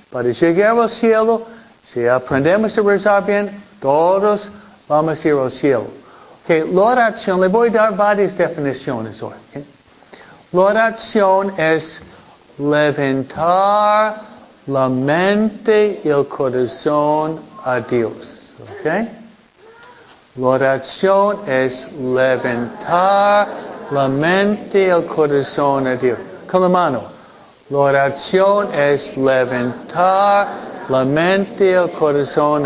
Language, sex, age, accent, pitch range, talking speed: Spanish, male, 60-79, American, 140-200 Hz, 110 wpm